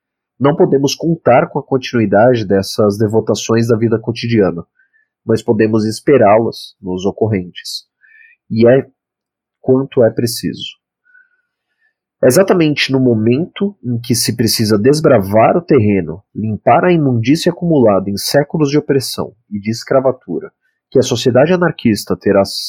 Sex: male